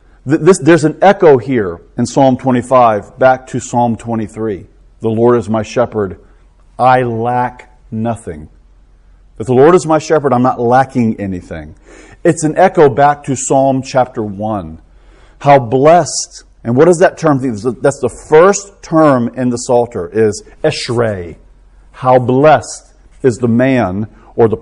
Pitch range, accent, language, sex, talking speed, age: 115-145 Hz, American, English, male, 150 wpm, 40-59